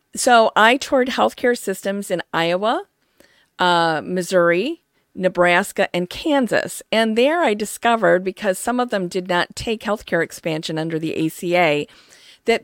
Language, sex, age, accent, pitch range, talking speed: English, female, 40-59, American, 180-230 Hz, 140 wpm